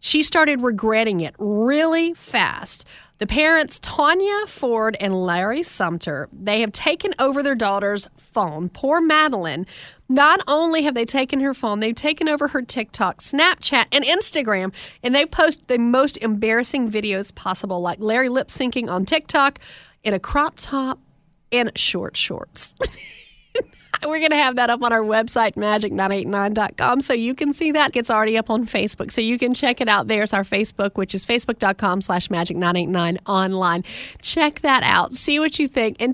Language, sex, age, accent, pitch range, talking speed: English, female, 30-49, American, 180-260 Hz, 165 wpm